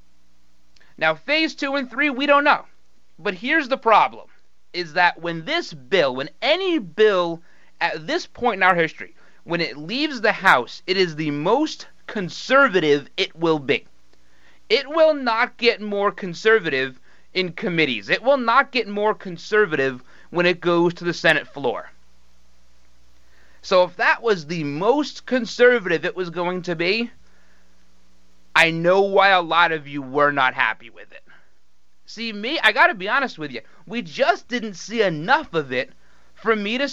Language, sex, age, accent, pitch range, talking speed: English, male, 30-49, American, 145-225 Hz, 165 wpm